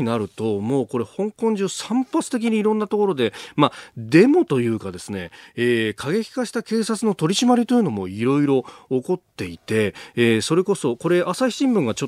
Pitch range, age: 110-180 Hz, 40-59